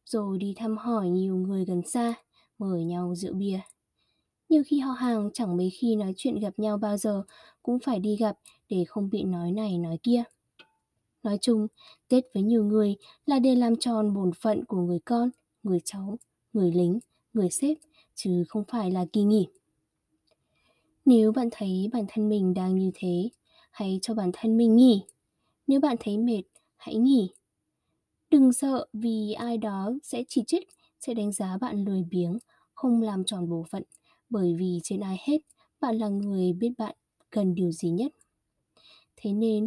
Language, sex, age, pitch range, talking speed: Vietnamese, female, 20-39, 195-235 Hz, 180 wpm